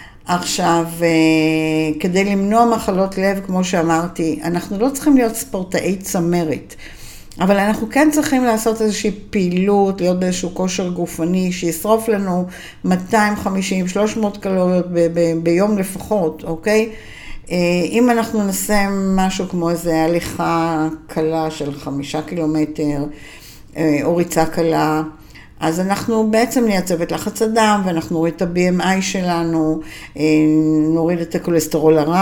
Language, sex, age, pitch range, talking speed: Hebrew, female, 60-79, 165-200 Hz, 110 wpm